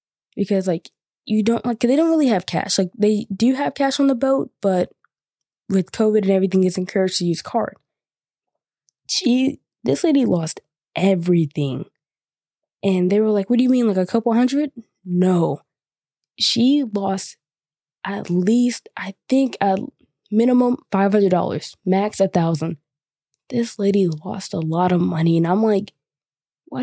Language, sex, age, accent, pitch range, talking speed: English, female, 20-39, American, 180-225 Hz, 160 wpm